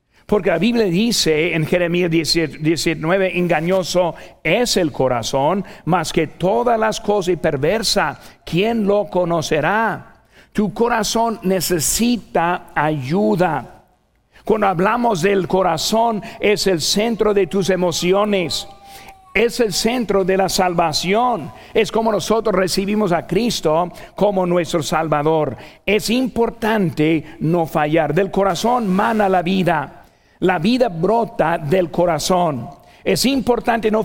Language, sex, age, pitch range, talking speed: Spanish, male, 50-69, 160-205 Hz, 120 wpm